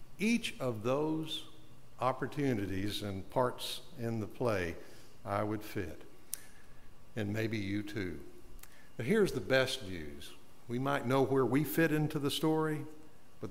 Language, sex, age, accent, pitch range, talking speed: English, male, 60-79, American, 100-150 Hz, 140 wpm